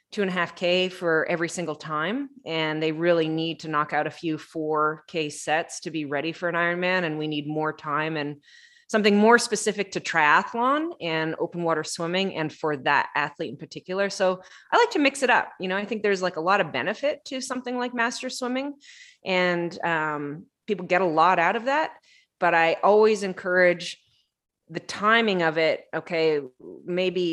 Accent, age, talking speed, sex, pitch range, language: American, 20-39, 195 wpm, female, 145-185 Hz, English